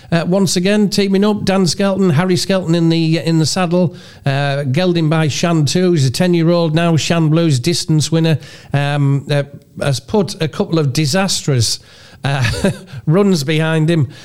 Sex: male